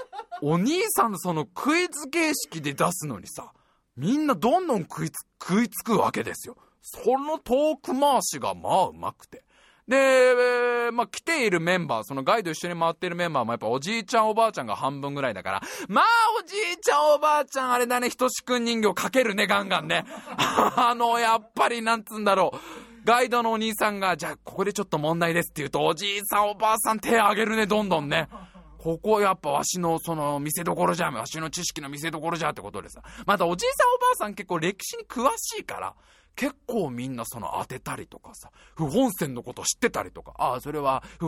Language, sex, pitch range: Japanese, male, 170-275 Hz